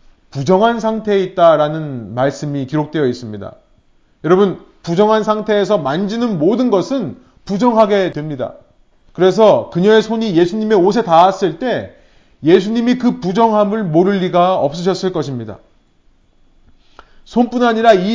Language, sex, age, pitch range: Korean, male, 30-49, 170-230 Hz